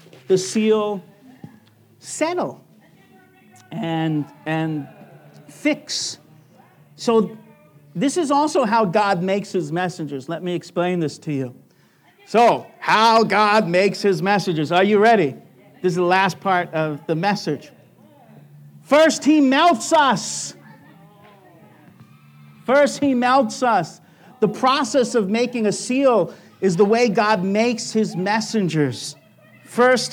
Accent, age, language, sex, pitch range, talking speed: American, 50-69, English, male, 185-245 Hz, 120 wpm